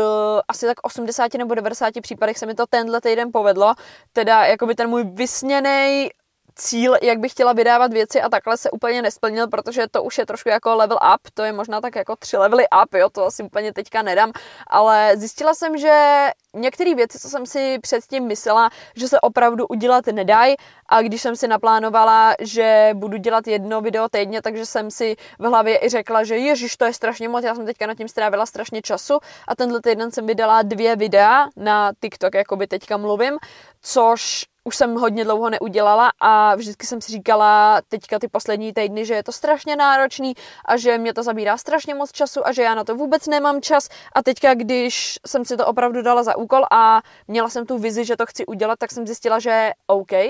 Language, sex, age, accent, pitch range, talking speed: Czech, female, 20-39, native, 220-250 Hz, 205 wpm